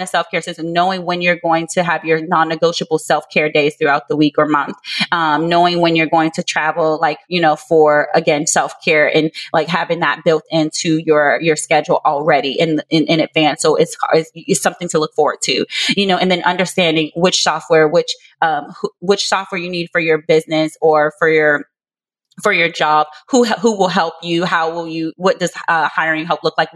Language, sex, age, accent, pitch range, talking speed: English, female, 20-39, American, 160-185 Hz, 210 wpm